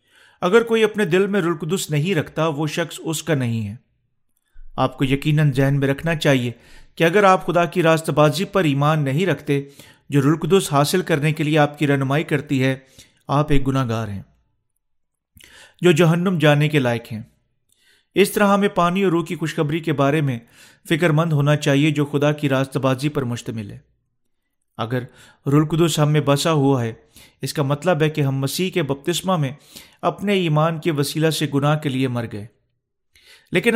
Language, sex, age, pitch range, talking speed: Urdu, male, 40-59, 135-170 Hz, 180 wpm